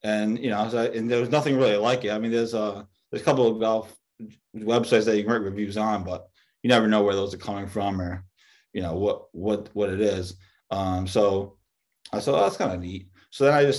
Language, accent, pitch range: English, American, 100-115 Hz